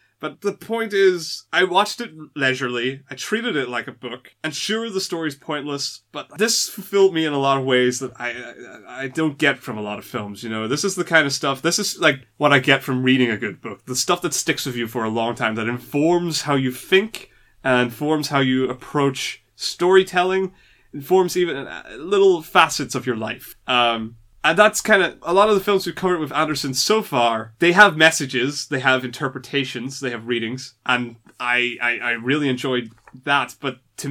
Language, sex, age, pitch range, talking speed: English, male, 20-39, 125-170 Hz, 210 wpm